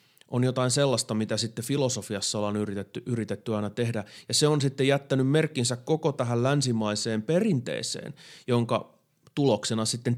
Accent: native